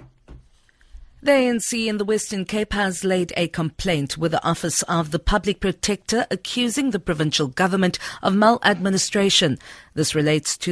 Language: English